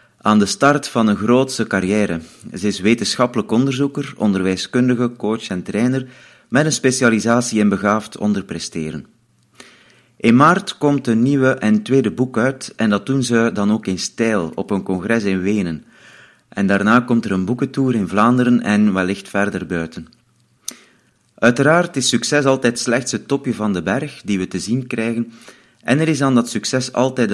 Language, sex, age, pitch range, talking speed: Dutch, male, 30-49, 100-125 Hz, 170 wpm